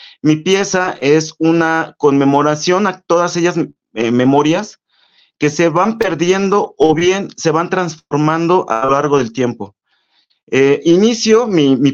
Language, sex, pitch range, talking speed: Spanish, male, 145-180 Hz, 140 wpm